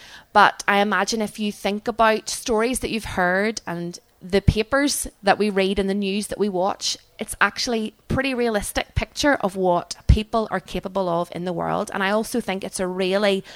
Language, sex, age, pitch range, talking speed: English, female, 20-39, 180-215 Hz, 200 wpm